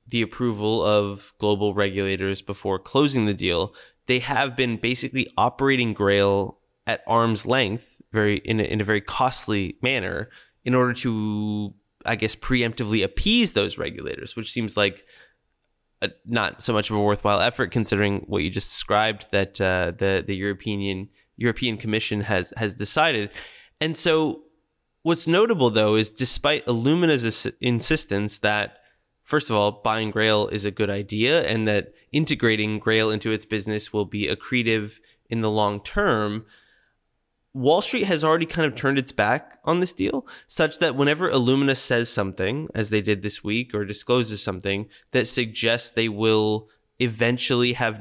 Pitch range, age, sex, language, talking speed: 105-125 Hz, 20-39, male, English, 155 wpm